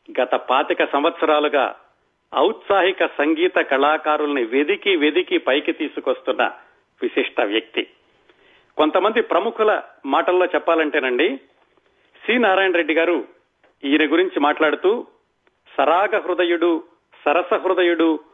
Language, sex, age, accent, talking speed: Telugu, male, 40-59, native, 90 wpm